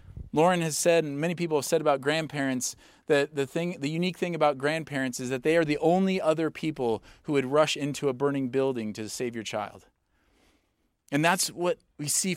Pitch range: 130-165 Hz